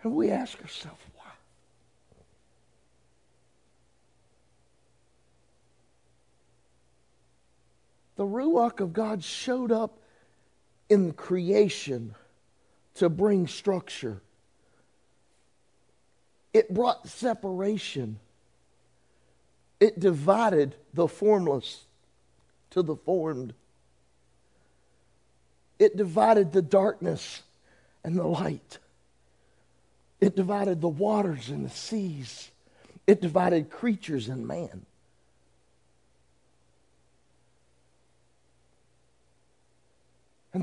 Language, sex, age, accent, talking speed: English, male, 50-69, American, 70 wpm